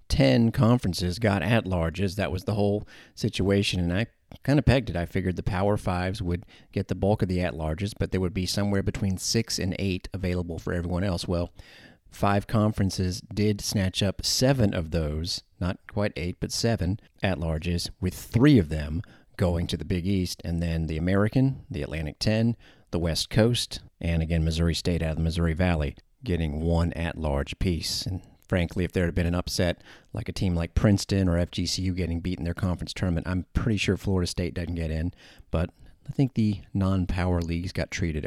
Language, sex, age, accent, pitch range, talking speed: English, male, 40-59, American, 85-105 Hz, 195 wpm